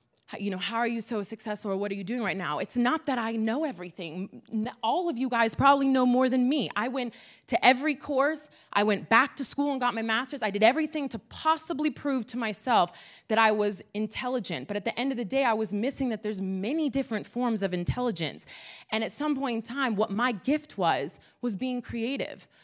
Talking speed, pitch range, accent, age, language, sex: 225 wpm, 210-260 Hz, American, 20-39, English, female